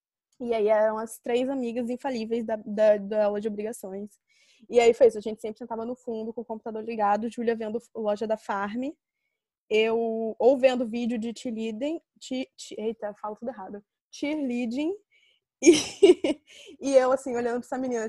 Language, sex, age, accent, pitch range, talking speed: Portuguese, female, 10-29, Brazilian, 225-280 Hz, 180 wpm